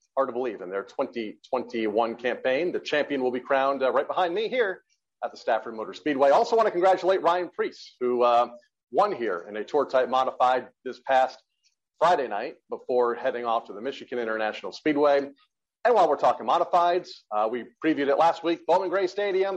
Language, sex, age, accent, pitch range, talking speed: English, male, 40-59, American, 130-170 Hz, 190 wpm